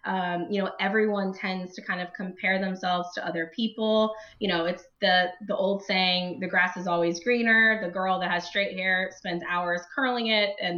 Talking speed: 200 wpm